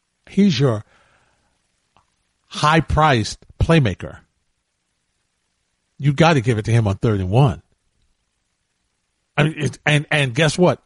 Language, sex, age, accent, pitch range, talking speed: English, male, 40-59, American, 115-160 Hz, 120 wpm